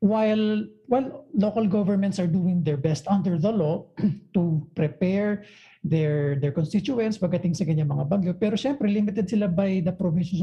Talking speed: 165 wpm